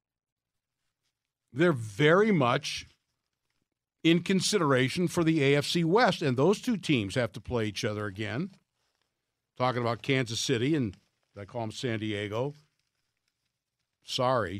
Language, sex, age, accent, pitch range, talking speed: English, male, 60-79, American, 130-190 Hz, 125 wpm